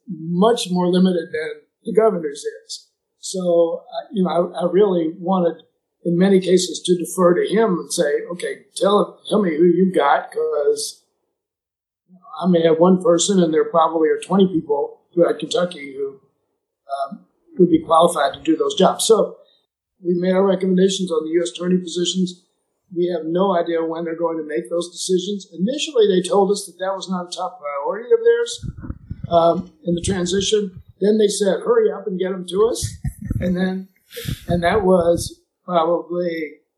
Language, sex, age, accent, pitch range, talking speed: English, male, 50-69, American, 170-225 Hz, 175 wpm